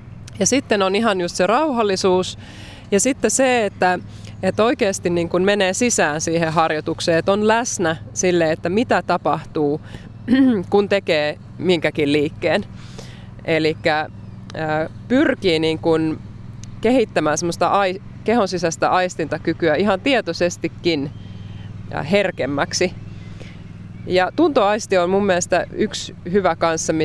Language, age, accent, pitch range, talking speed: Finnish, 20-39, native, 150-195 Hz, 110 wpm